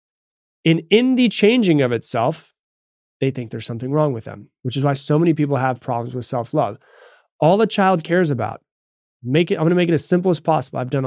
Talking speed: 220 wpm